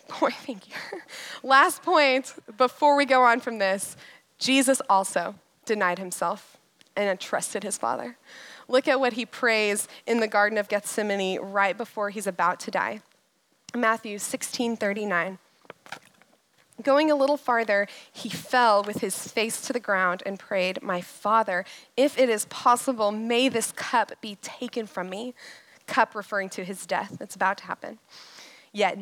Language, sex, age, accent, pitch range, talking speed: English, female, 20-39, American, 205-290 Hz, 155 wpm